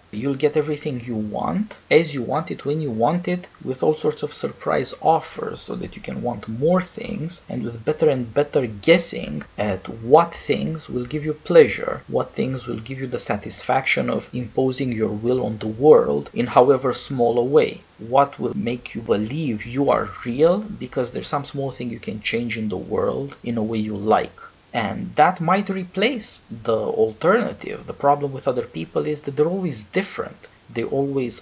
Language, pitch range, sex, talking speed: English, 115-155 Hz, male, 190 wpm